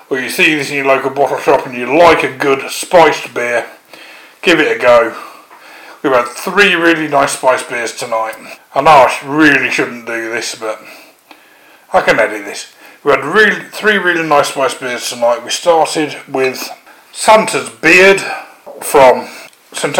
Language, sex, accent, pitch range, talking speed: English, male, British, 115-160 Hz, 170 wpm